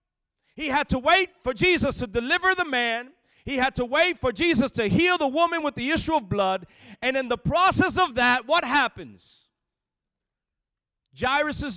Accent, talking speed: American, 175 wpm